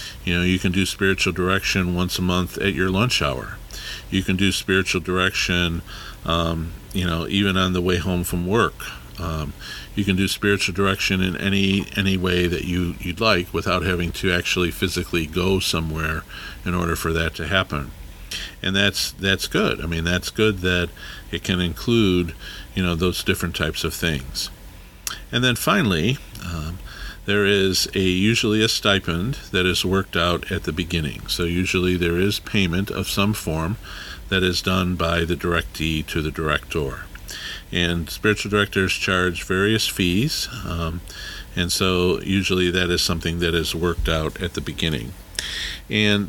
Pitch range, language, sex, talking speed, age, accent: 85-95 Hz, English, male, 170 wpm, 50-69, American